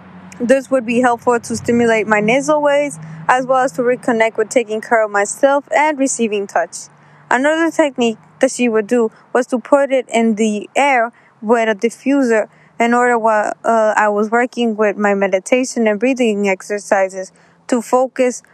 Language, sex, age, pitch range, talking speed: English, female, 20-39, 205-250 Hz, 170 wpm